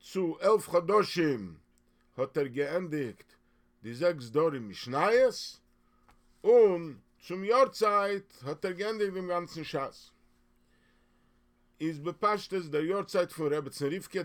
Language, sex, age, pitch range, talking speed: English, male, 50-69, 120-190 Hz, 115 wpm